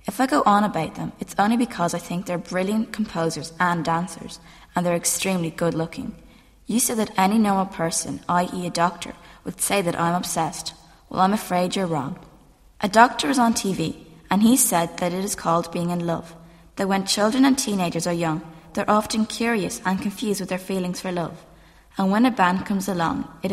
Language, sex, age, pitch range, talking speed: English, female, 20-39, 170-210 Hz, 200 wpm